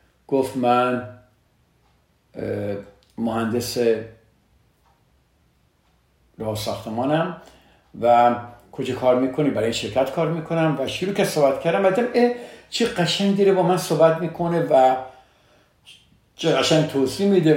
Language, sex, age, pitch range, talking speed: Persian, male, 50-69, 115-160 Hz, 95 wpm